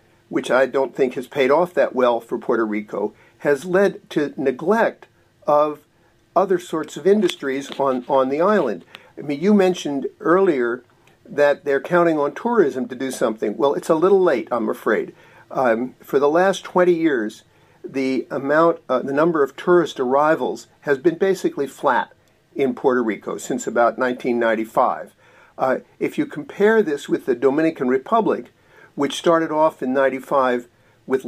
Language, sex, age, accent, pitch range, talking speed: English, male, 50-69, American, 130-180 Hz, 160 wpm